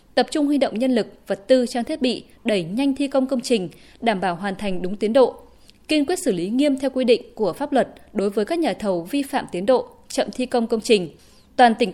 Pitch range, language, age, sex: 210-265 Hz, Vietnamese, 20-39, female